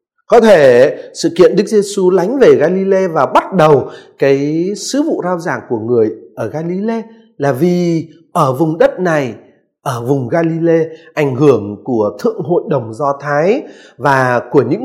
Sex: male